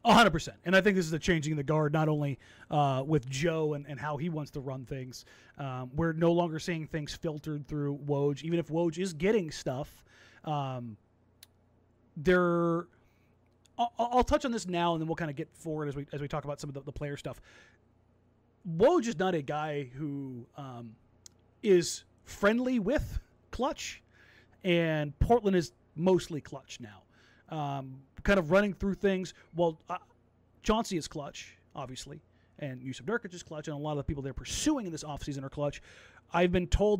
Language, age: English, 30-49